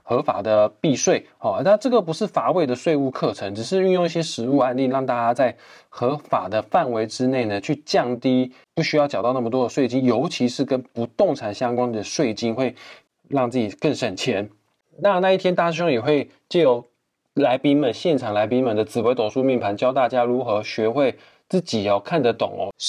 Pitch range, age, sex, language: 110-135 Hz, 20-39, male, Chinese